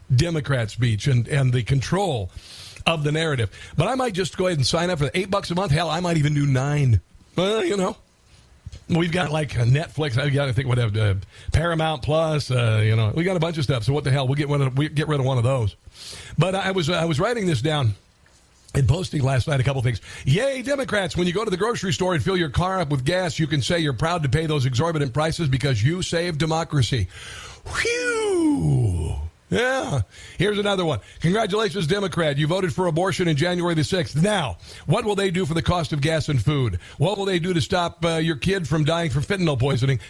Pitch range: 130-175 Hz